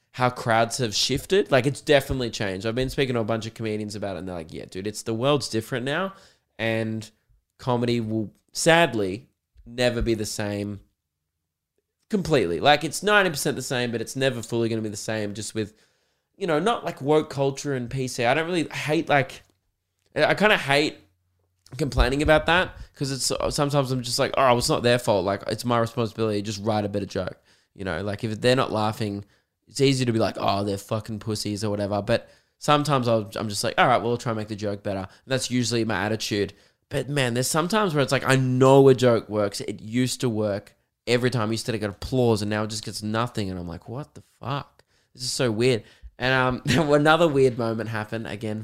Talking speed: 220 wpm